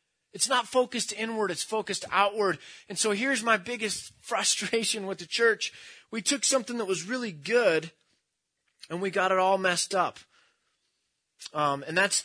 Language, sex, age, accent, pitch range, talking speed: English, male, 30-49, American, 150-215 Hz, 160 wpm